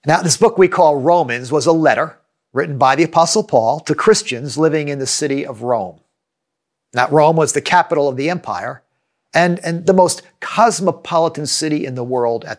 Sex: male